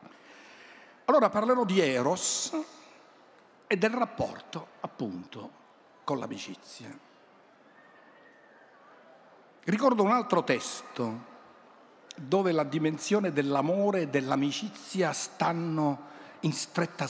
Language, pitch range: Italian, 130-190 Hz